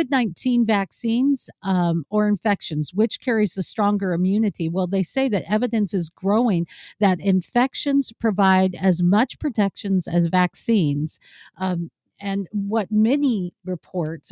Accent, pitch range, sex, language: American, 185-245 Hz, female, English